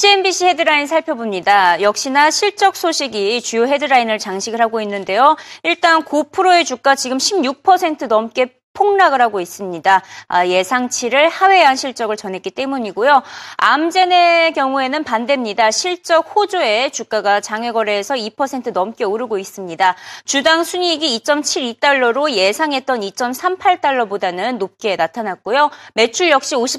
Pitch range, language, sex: 220-330 Hz, Korean, female